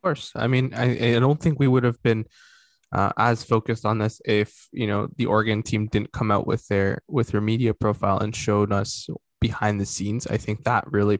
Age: 20-39